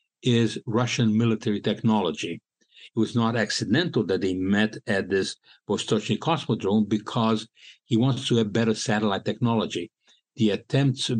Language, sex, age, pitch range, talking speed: English, male, 60-79, 105-120 Hz, 135 wpm